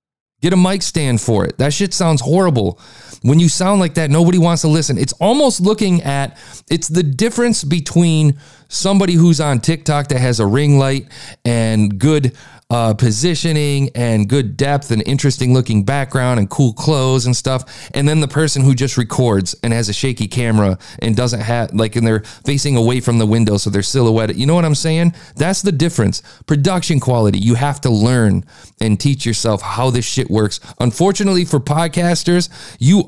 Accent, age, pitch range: American, 40-59, 115-165 Hz